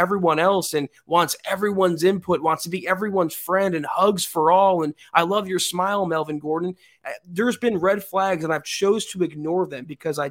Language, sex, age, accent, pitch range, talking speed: English, male, 20-39, American, 165-210 Hz, 200 wpm